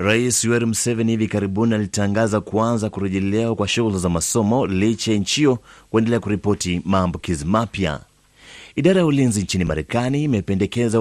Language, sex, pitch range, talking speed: Swahili, male, 100-120 Hz, 125 wpm